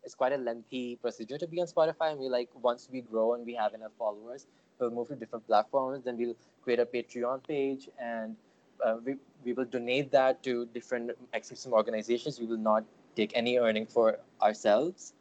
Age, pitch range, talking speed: 20-39, 120-140 Hz, 205 wpm